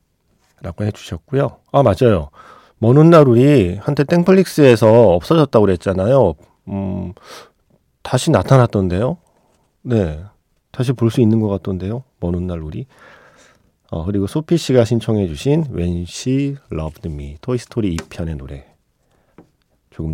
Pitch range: 80-125 Hz